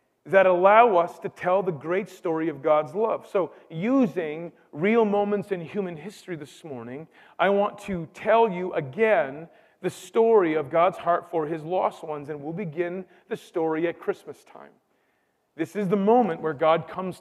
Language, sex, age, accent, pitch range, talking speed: English, male, 40-59, American, 175-215 Hz, 175 wpm